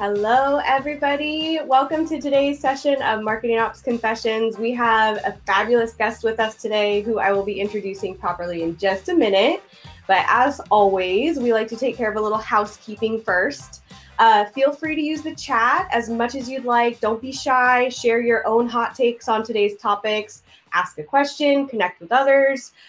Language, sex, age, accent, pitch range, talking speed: English, female, 20-39, American, 190-240 Hz, 185 wpm